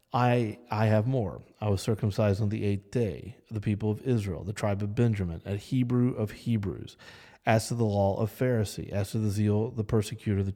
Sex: male